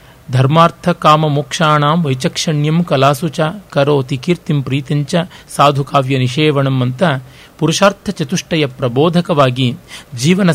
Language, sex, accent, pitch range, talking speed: Kannada, male, native, 135-165 Hz, 90 wpm